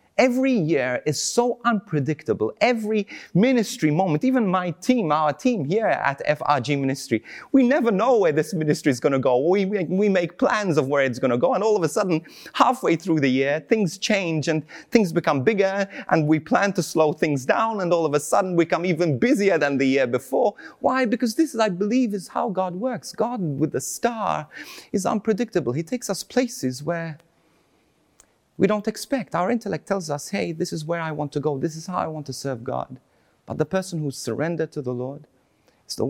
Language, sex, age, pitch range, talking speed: English, male, 30-49, 140-205 Hz, 210 wpm